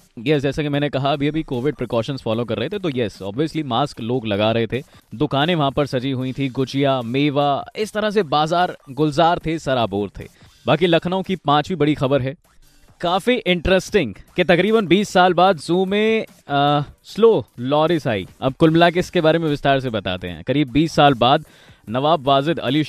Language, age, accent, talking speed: Hindi, 20-39, native, 155 wpm